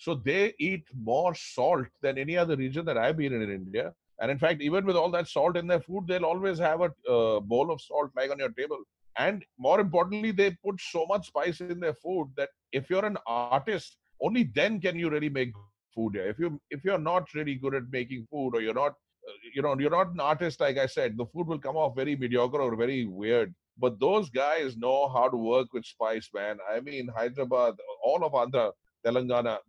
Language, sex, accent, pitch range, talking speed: English, male, Indian, 120-165 Hz, 225 wpm